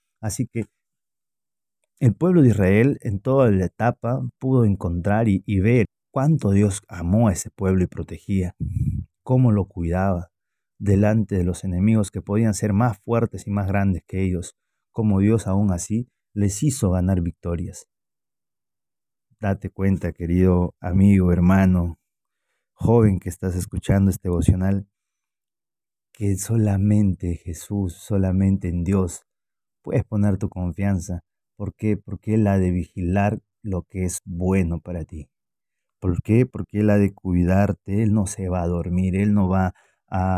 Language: Spanish